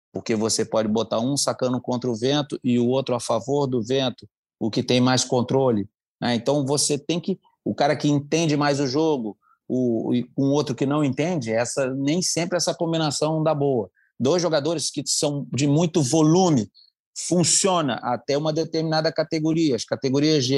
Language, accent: Portuguese, Brazilian